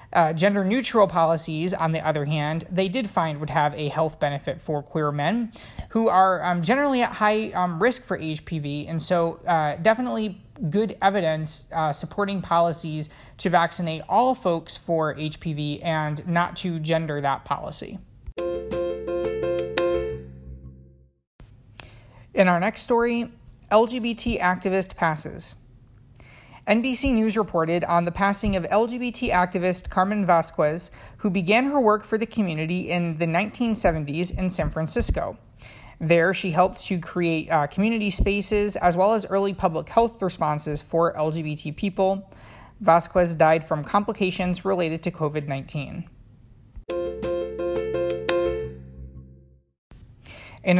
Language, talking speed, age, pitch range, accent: English, 130 wpm, 20-39, 150-195 Hz, American